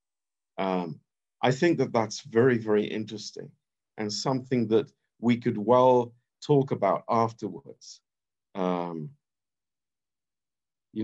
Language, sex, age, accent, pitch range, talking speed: Romanian, male, 50-69, British, 105-135 Hz, 105 wpm